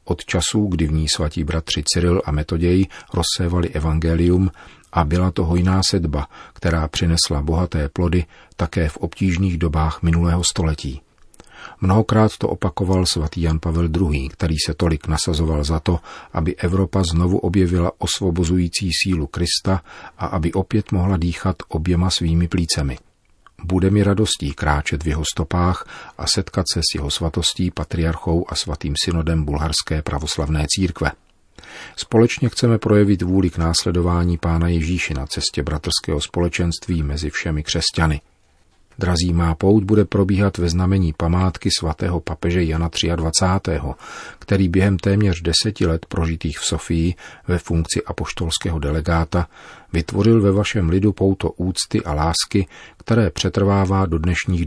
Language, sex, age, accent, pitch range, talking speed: Czech, male, 40-59, native, 80-95 Hz, 140 wpm